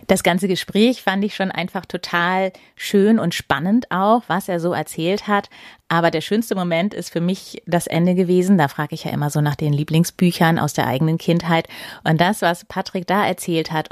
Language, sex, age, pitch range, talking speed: German, female, 30-49, 165-210 Hz, 205 wpm